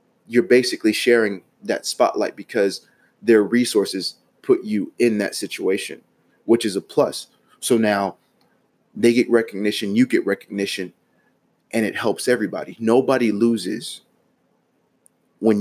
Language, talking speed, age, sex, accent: English, 125 wpm, 30-49, male, American